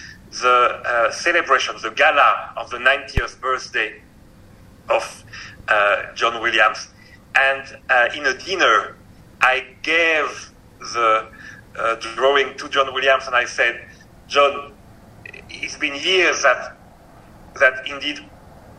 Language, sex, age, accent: Japanese, male, 40-59, French